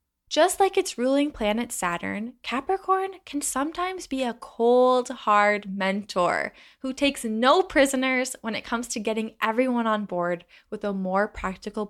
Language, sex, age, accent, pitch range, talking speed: English, female, 10-29, American, 200-280 Hz, 150 wpm